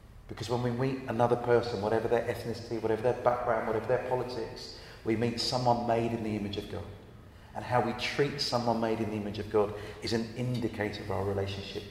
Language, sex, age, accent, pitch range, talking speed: English, male, 40-59, British, 105-145 Hz, 205 wpm